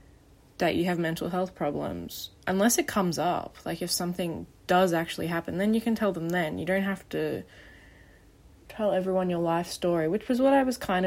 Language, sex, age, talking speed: English, female, 20-39, 200 wpm